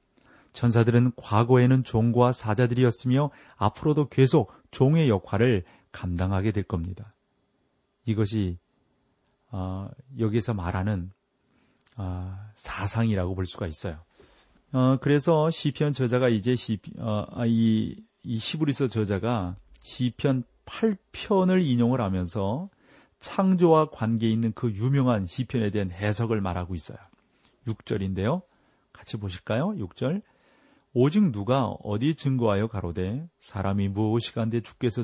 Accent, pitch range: native, 105-130 Hz